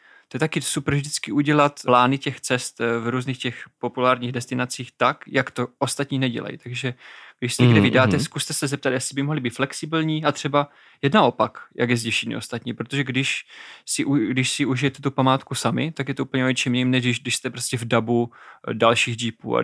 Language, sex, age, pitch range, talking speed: Czech, male, 20-39, 115-135 Hz, 195 wpm